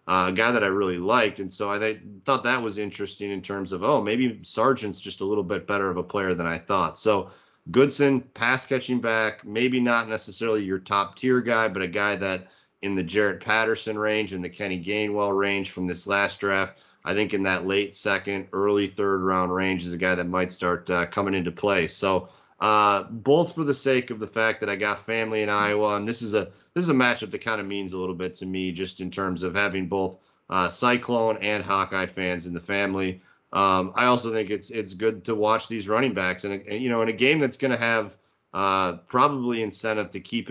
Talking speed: 230 wpm